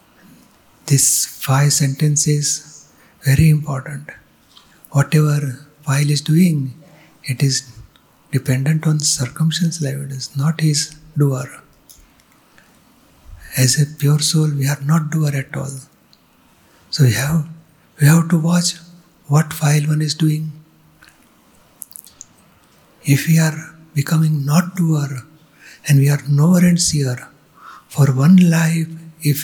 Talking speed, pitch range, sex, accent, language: 120 wpm, 140-160 Hz, male, native, Gujarati